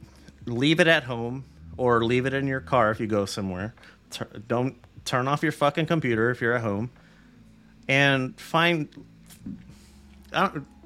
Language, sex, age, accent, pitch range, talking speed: English, male, 30-49, American, 100-145 Hz, 160 wpm